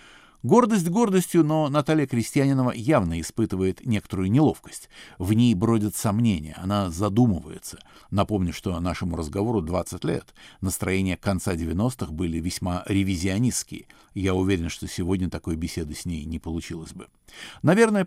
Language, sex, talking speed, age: Russian, male, 130 wpm, 50-69